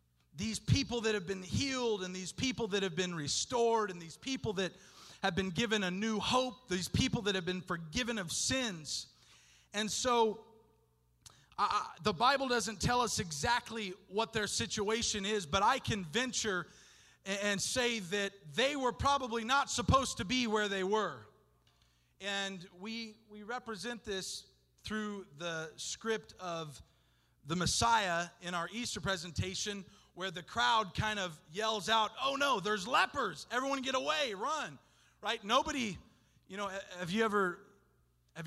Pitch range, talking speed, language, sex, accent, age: 145-220 Hz, 155 wpm, English, male, American, 40-59